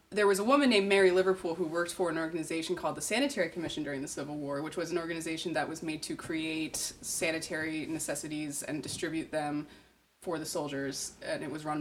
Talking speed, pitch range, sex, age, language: 210 wpm, 160-200 Hz, female, 20-39, English